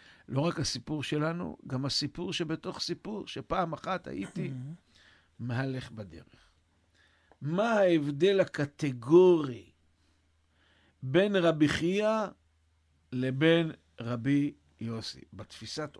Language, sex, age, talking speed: Hebrew, male, 60-79, 85 wpm